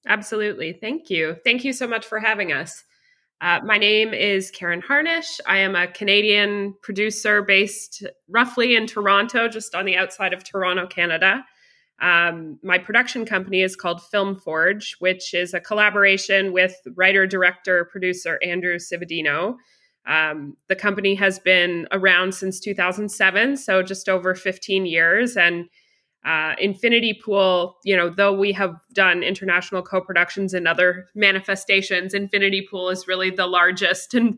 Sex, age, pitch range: female, 20-39, 180-210 Hz